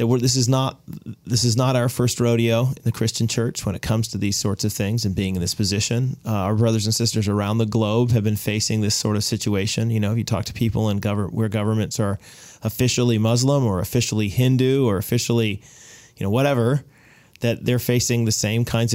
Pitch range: 105-125 Hz